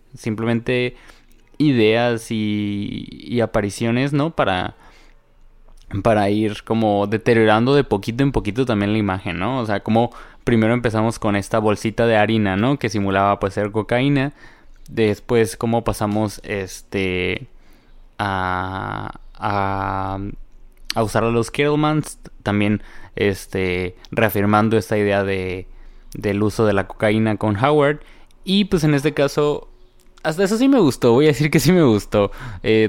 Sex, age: male, 20-39